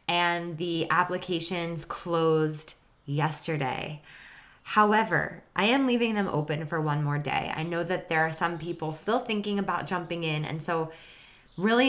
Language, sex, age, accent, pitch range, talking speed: English, female, 20-39, American, 155-185 Hz, 150 wpm